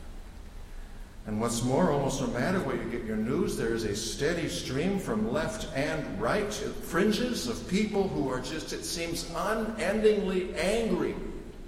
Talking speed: 155 wpm